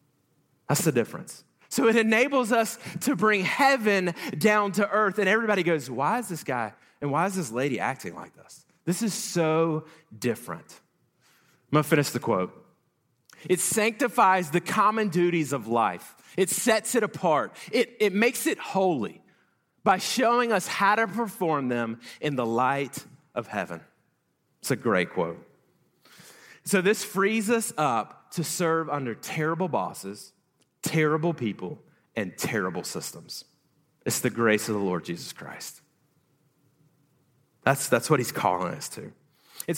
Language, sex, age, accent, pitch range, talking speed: English, male, 30-49, American, 140-200 Hz, 150 wpm